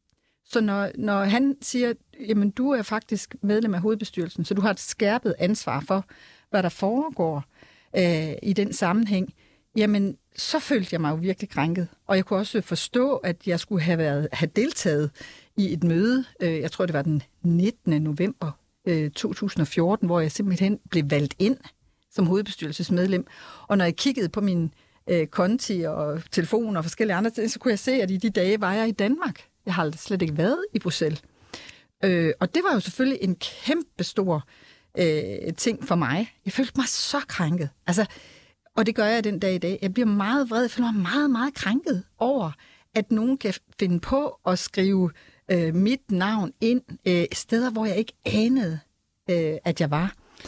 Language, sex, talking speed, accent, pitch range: Danish, female, 190 wpm, native, 175-230 Hz